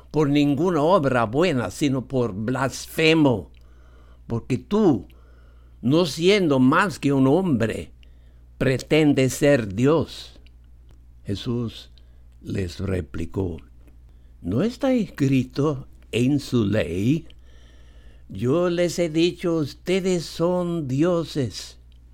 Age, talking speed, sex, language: 60-79, 90 wpm, male, English